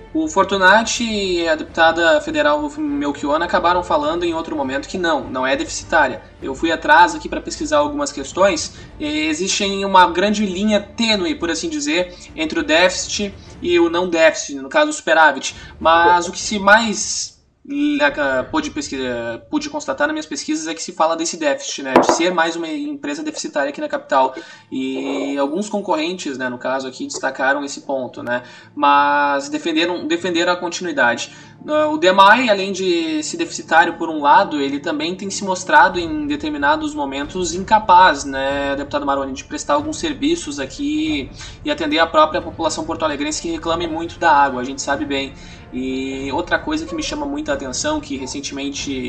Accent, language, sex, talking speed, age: Brazilian, Portuguese, male, 170 wpm, 20-39